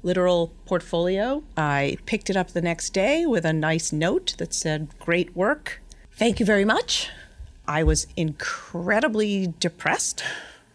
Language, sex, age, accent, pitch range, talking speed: English, female, 40-59, American, 160-210 Hz, 140 wpm